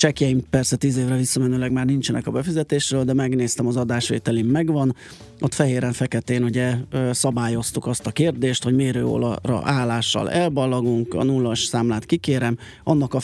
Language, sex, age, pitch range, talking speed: Hungarian, male, 30-49, 120-145 Hz, 140 wpm